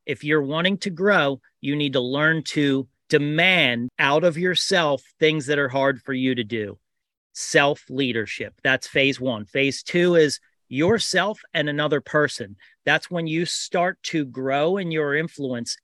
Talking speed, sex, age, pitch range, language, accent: 160 wpm, male, 40-59, 140-170 Hz, English, American